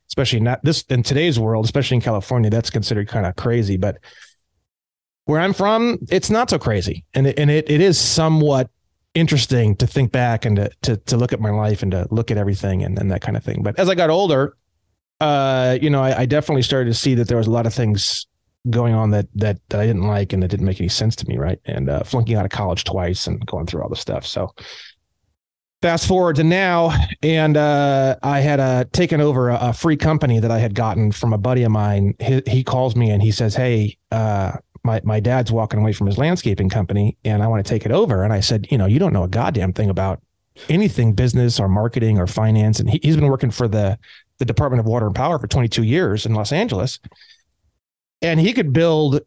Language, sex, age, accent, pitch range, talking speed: English, male, 30-49, American, 105-140 Hz, 235 wpm